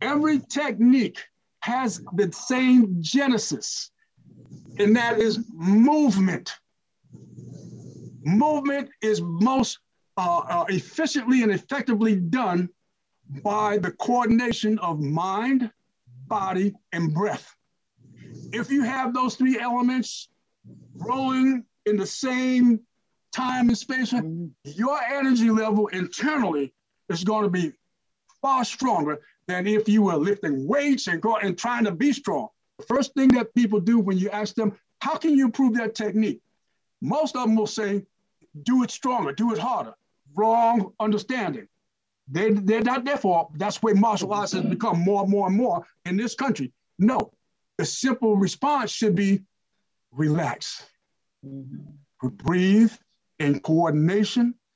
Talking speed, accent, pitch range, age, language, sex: 130 wpm, American, 185-250 Hz, 60-79, Russian, male